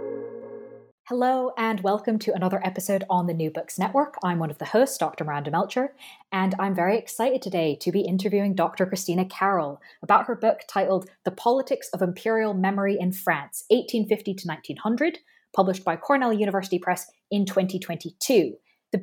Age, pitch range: 20-39, 170-225 Hz